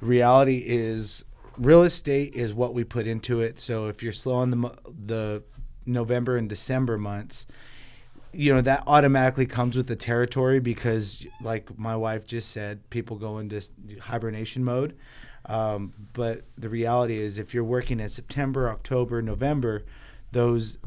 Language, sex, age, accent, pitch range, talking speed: English, male, 30-49, American, 110-125 Hz, 150 wpm